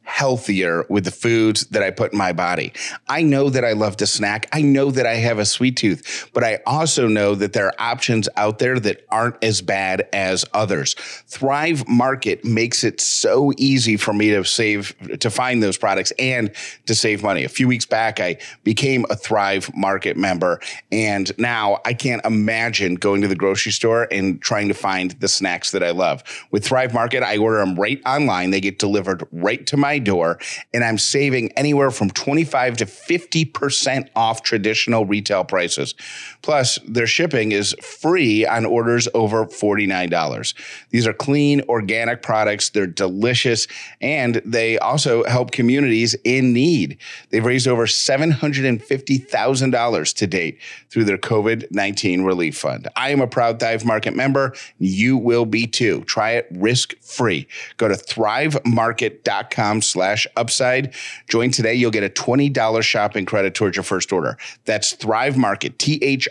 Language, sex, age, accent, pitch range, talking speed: English, male, 30-49, American, 105-130 Hz, 165 wpm